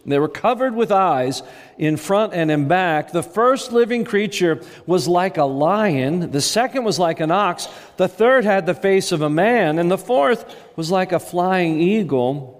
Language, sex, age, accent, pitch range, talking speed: English, male, 50-69, American, 150-200 Hz, 190 wpm